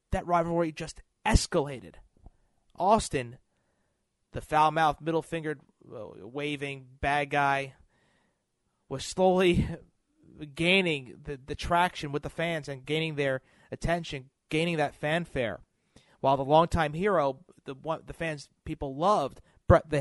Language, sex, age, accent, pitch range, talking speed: English, male, 30-49, American, 135-170 Hz, 120 wpm